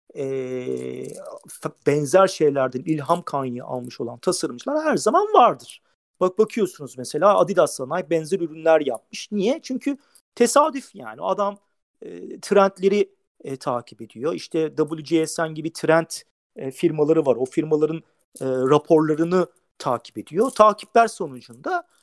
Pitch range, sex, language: 140-215 Hz, male, Turkish